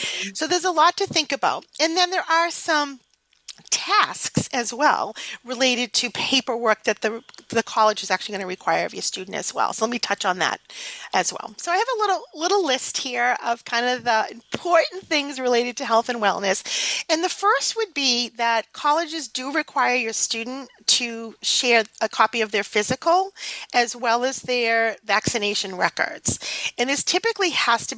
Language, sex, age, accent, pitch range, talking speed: English, female, 40-59, American, 215-275 Hz, 190 wpm